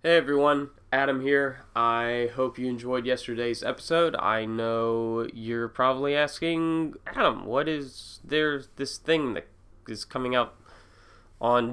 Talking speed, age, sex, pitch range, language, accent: 135 wpm, 20-39, male, 105-130 Hz, English, American